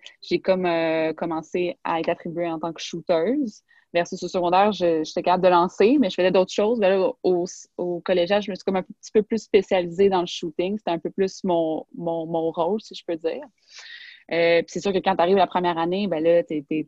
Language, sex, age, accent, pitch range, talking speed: French, female, 30-49, Canadian, 160-185 Hz, 240 wpm